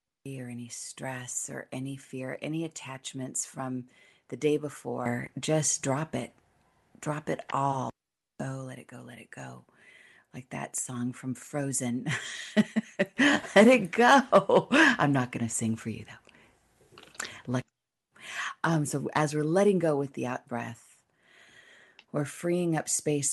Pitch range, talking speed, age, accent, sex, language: 130-155 Hz, 140 wpm, 40-59, American, female, English